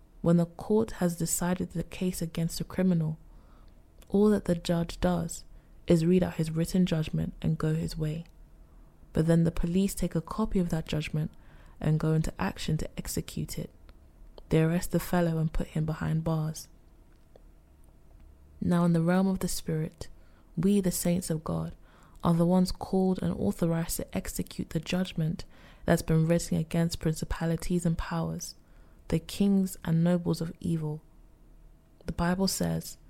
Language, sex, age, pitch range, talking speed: English, female, 20-39, 155-175 Hz, 160 wpm